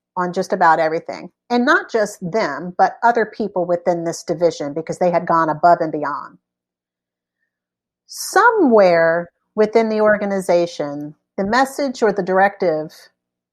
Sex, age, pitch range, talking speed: female, 50-69, 145-210 Hz, 135 wpm